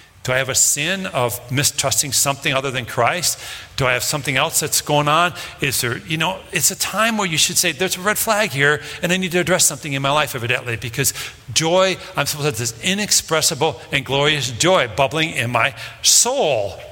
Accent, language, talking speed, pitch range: American, English, 215 wpm, 115-175 Hz